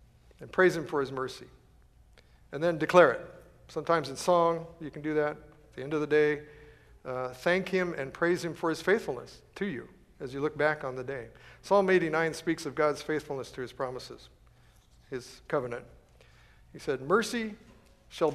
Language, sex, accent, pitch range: English, male, American, 135-170 Hz